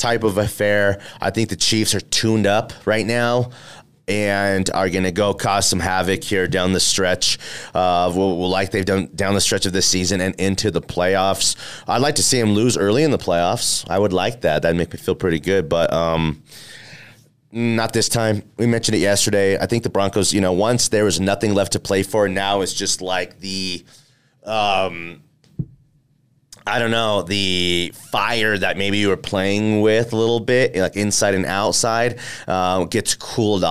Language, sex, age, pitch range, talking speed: English, male, 30-49, 90-115 Hz, 195 wpm